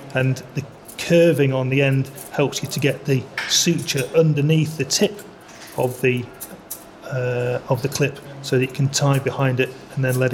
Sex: male